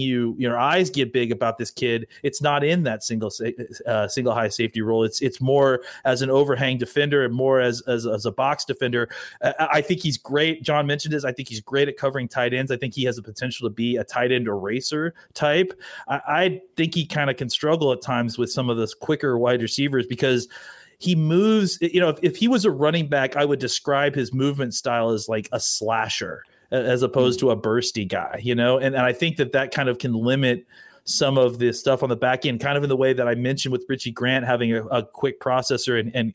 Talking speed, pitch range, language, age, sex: 240 wpm, 120-150 Hz, English, 30-49, male